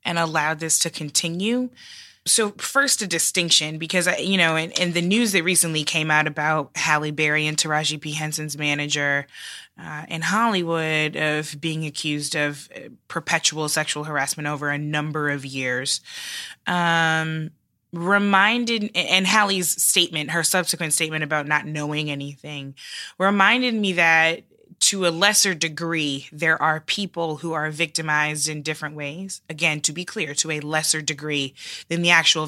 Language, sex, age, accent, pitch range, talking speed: English, female, 20-39, American, 150-175 Hz, 155 wpm